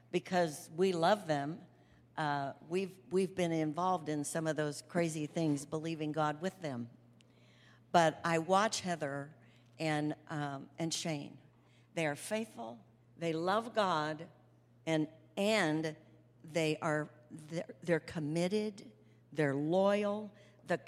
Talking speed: 125 wpm